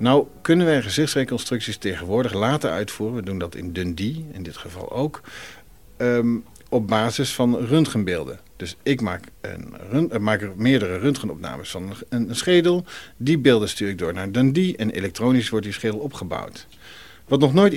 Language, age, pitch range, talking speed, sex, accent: Dutch, 50-69, 105-150 Hz, 165 wpm, male, Dutch